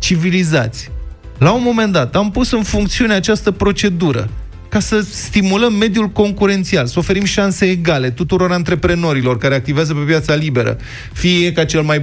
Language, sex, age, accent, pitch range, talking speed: Romanian, male, 30-49, native, 125-190 Hz, 155 wpm